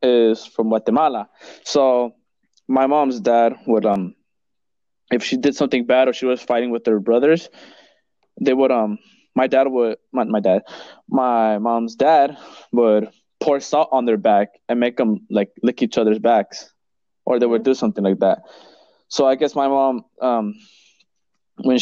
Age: 20-39